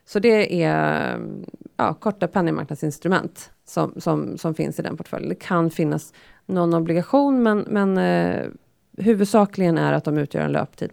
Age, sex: 30-49, female